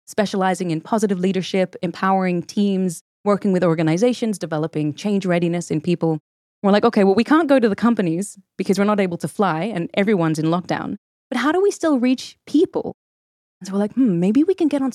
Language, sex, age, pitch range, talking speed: English, female, 20-39, 165-230 Hz, 205 wpm